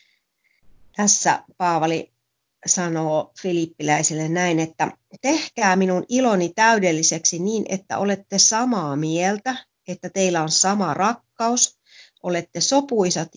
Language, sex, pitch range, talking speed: Finnish, female, 160-210 Hz, 100 wpm